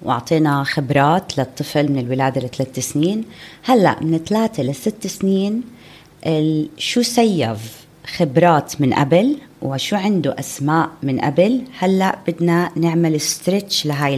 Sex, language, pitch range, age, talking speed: female, Arabic, 150-190 Hz, 30-49, 115 wpm